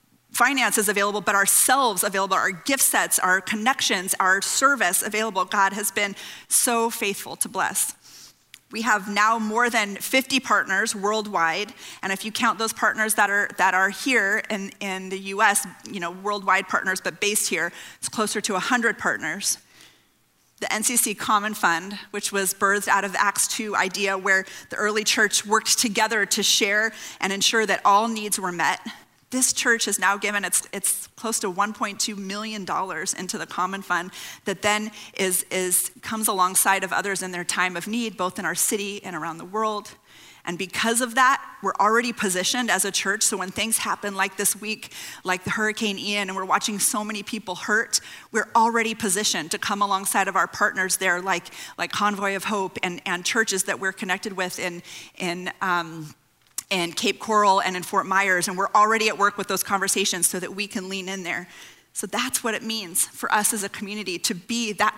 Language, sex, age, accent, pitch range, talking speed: English, female, 30-49, American, 190-220 Hz, 190 wpm